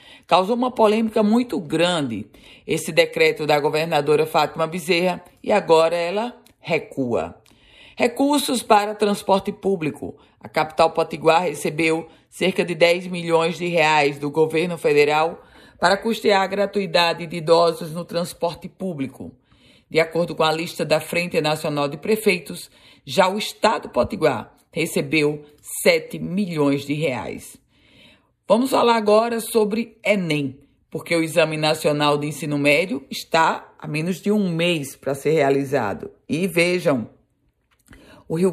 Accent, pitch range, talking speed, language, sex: Brazilian, 160-200 Hz, 130 wpm, Portuguese, female